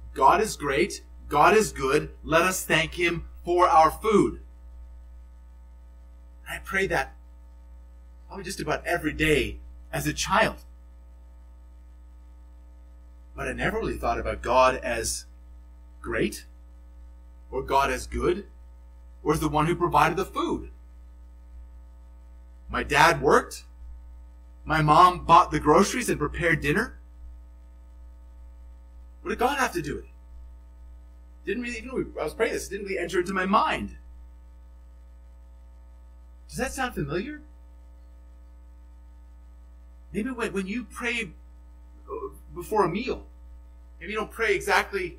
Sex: male